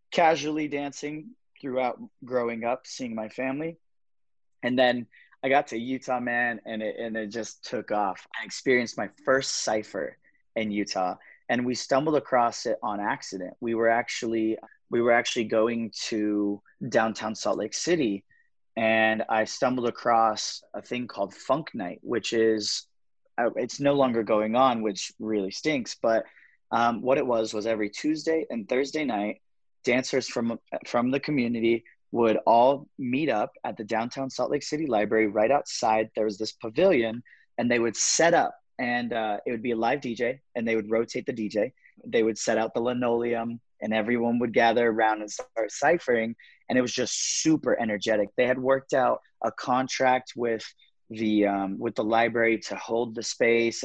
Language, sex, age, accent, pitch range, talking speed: English, male, 30-49, American, 110-130 Hz, 170 wpm